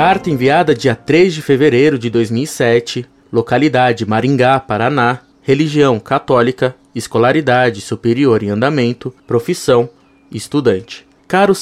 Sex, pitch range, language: male, 120-150 Hz, Portuguese